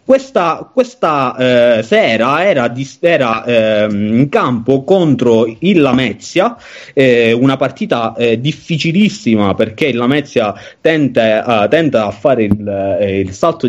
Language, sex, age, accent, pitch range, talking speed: Italian, male, 30-49, native, 115-165 Hz, 130 wpm